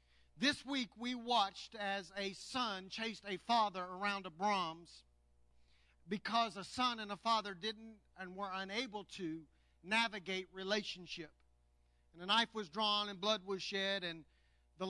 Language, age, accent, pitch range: English, 50-69, American, 175-215 Hz